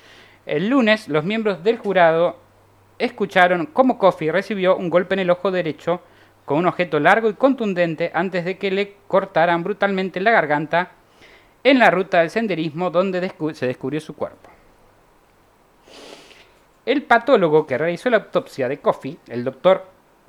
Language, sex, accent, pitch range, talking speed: Spanish, male, Argentinian, 135-195 Hz, 150 wpm